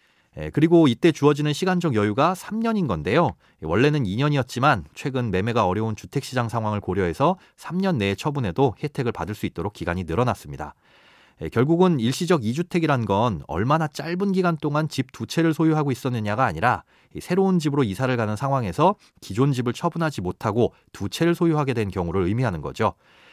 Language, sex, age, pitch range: Korean, male, 30-49, 105-165 Hz